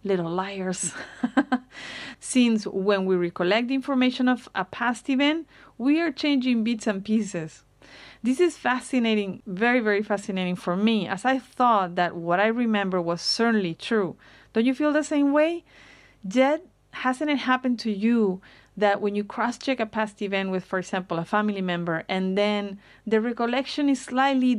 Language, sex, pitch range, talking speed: English, female, 190-250 Hz, 160 wpm